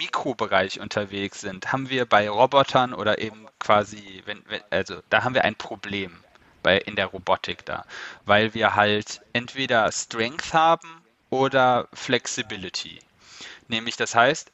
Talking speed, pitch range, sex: 140 wpm, 110-135 Hz, male